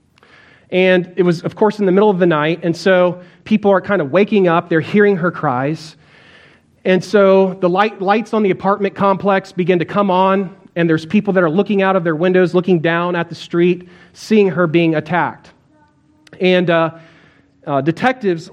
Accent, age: American, 30-49